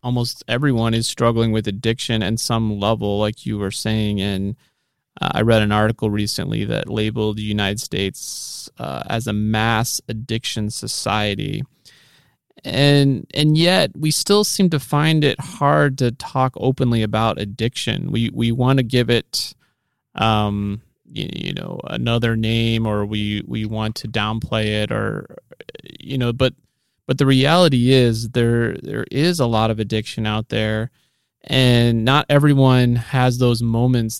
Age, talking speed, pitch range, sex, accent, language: 30-49, 155 wpm, 110-130 Hz, male, American, English